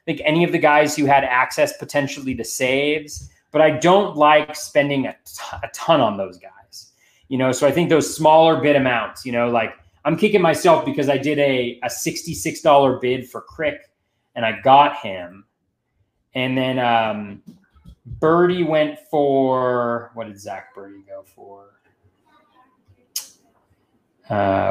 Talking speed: 155 wpm